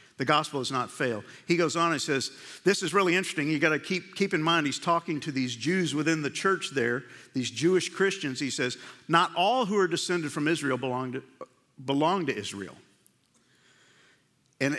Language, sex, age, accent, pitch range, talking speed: English, male, 50-69, American, 140-175 Hz, 195 wpm